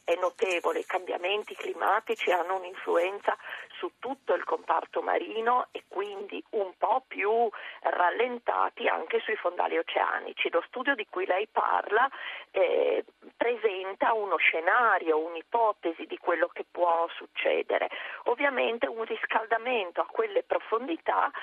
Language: Italian